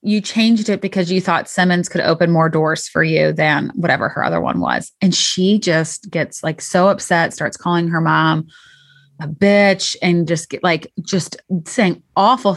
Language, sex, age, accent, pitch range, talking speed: English, female, 30-49, American, 170-215 Hz, 185 wpm